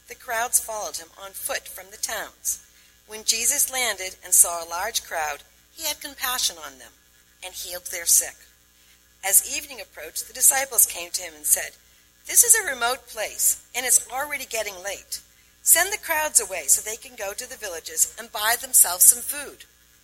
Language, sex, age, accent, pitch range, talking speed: English, female, 50-69, American, 160-250 Hz, 185 wpm